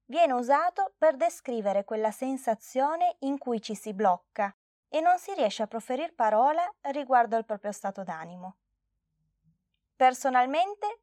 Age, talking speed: 20-39, 130 wpm